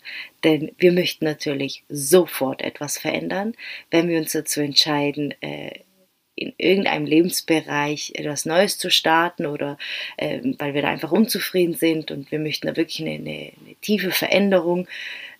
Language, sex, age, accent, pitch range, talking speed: German, female, 30-49, German, 155-210 Hz, 140 wpm